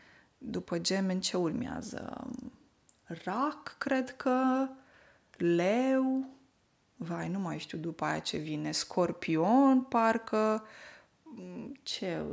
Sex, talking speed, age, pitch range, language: female, 95 wpm, 20-39, 180-255 Hz, Romanian